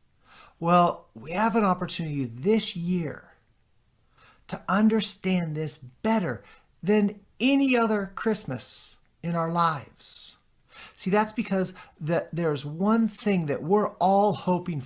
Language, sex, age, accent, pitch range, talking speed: English, male, 50-69, American, 130-195 Hz, 115 wpm